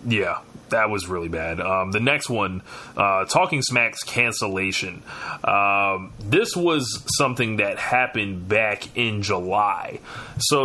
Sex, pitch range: male, 105-130 Hz